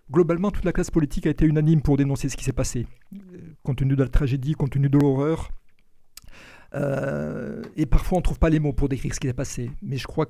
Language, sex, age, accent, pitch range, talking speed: French, male, 60-79, French, 140-175 Hz, 240 wpm